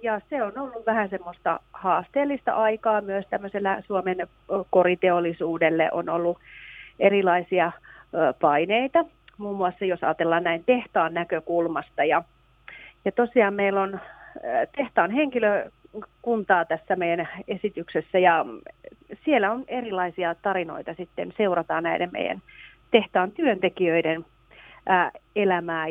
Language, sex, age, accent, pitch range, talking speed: Finnish, female, 40-59, native, 175-230 Hz, 100 wpm